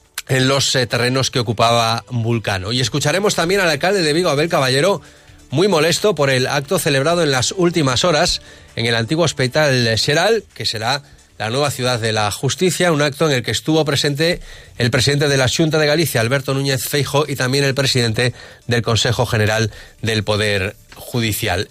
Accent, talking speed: Spanish, 180 wpm